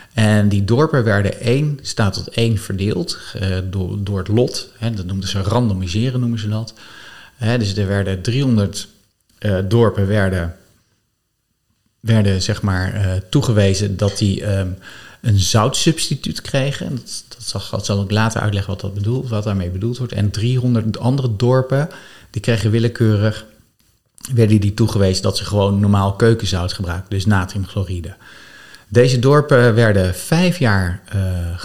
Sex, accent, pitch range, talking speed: male, Dutch, 100-115 Hz, 135 wpm